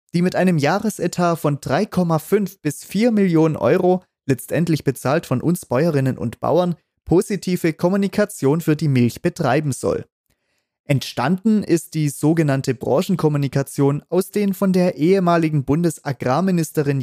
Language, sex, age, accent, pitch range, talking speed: German, male, 30-49, German, 135-180 Hz, 125 wpm